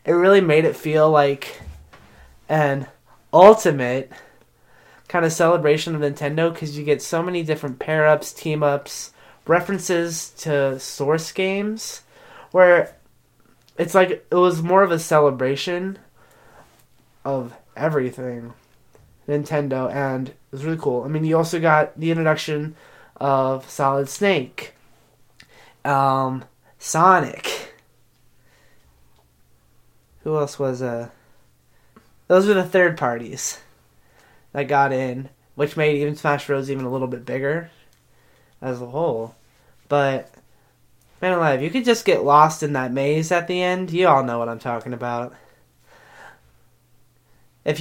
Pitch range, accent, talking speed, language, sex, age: 130-165 Hz, American, 125 wpm, English, male, 20-39